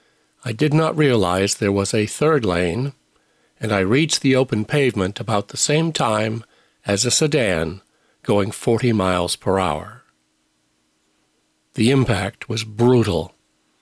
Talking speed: 135 wpm